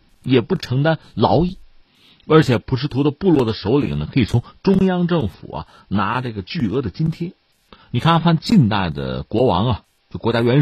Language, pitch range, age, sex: Chinese, 105-155 Hz, 50-69, male